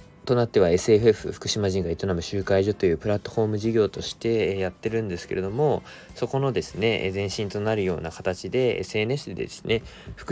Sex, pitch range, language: male, 90-110 Hz, Japanese